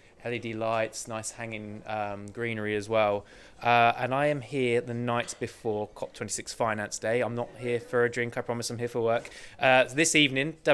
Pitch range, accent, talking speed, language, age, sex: 110-125 Hz, British, 190 wpm, English, 20-39, male